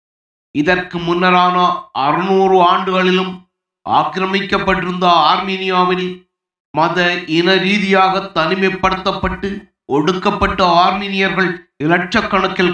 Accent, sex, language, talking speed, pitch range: native, male, Tamil, 60 wpm, 160-185 Hz